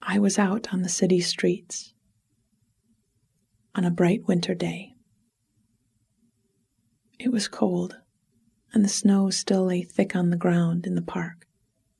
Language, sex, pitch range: English, female, 165-200 Hz